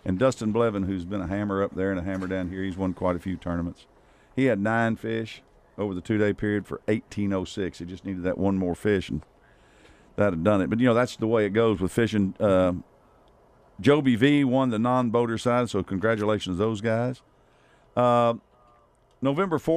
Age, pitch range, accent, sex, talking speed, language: 50-69, 95-120 Hz, American, male, 200 wpm, English